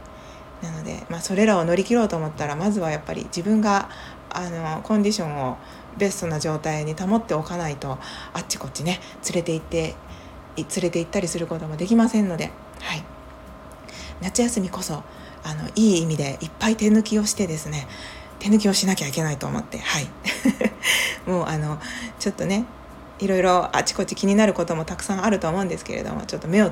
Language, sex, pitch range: Japanese, female, 155-200 Hz